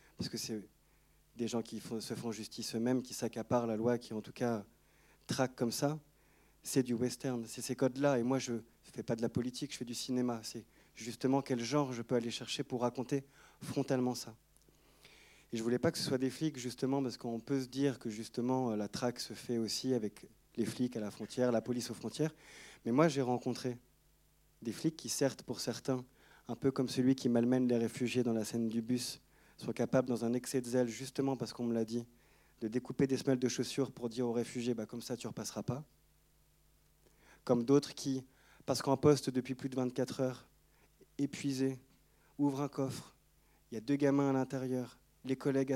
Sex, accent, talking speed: male, French, 210 wpm